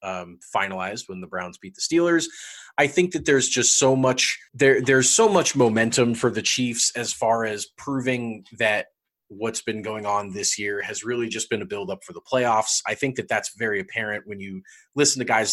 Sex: male